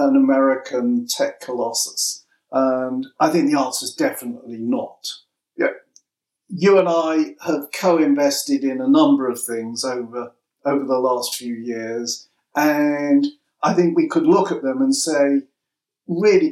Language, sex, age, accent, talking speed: English, male, 50-69, British, 145 wpm